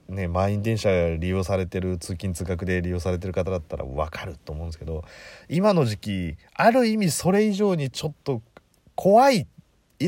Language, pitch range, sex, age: Japanese, 80-130 Hz, male, 40-59